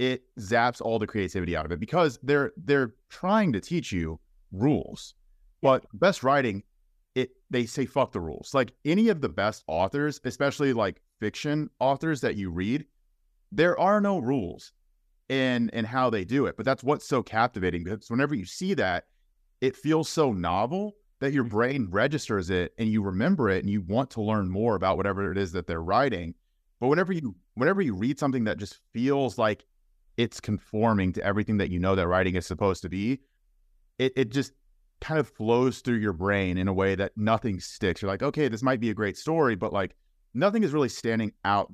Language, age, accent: English, 30-49, American